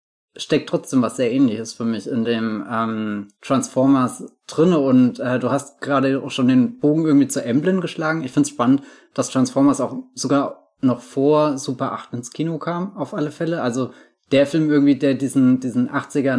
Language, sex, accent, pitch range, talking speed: German, male, German, 125-150 Hz, 185 wpm